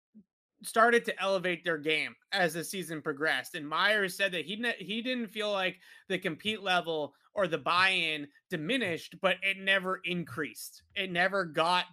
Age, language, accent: 30-49, English, American